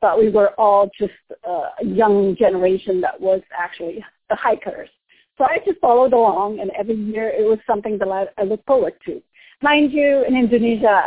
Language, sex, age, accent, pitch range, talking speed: English, female, 40-59, American, 195-240 Hz, 180 wpm